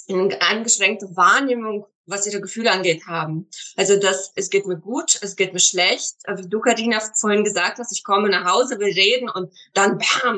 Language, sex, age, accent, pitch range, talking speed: German, female, 20-39, German, 180-220 Hz, 185 wpm